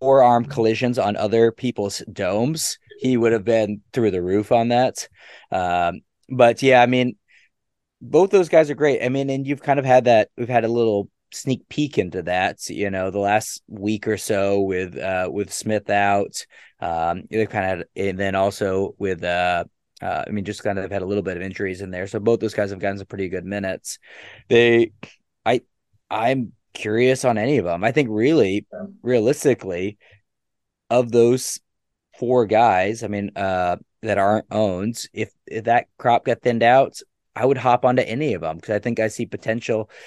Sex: male